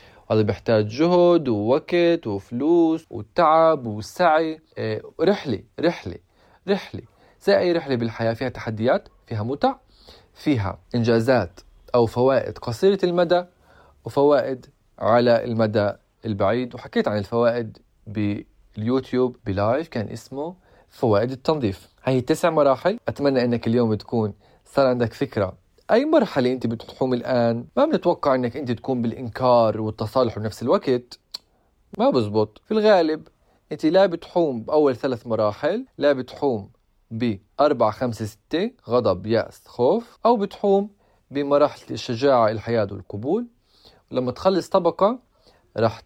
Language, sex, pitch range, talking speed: Arabic, male, 110-155 Hz, 115 wpm